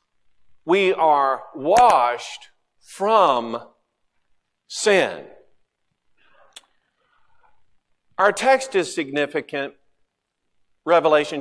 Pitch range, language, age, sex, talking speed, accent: 130-160 Hz, English, 50-69, male, 55 wpm, American